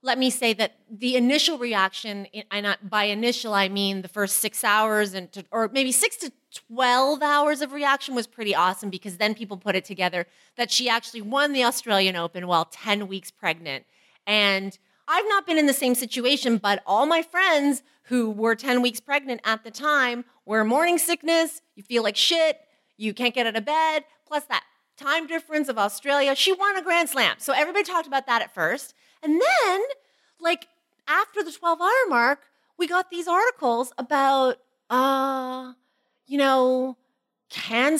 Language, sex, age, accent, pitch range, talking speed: English, female, 30-49, American, 215-305 Hz, 175 wpm